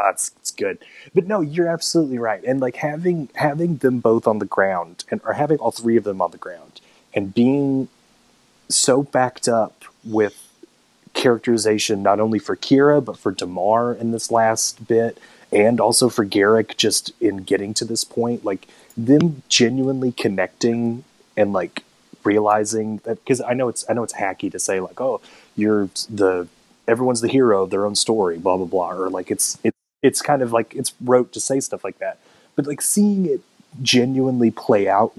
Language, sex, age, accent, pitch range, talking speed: English, male, 30-49, American, 105-130 Hz, 185 wpm